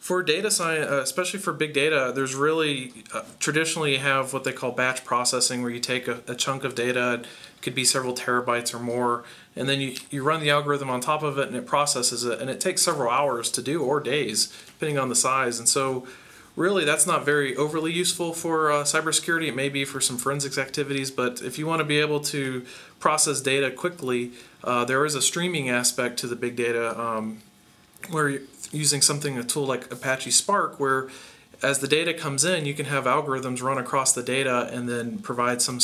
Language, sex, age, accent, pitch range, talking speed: English, male, 40-59, American, 120-145 Hz, 215 wpm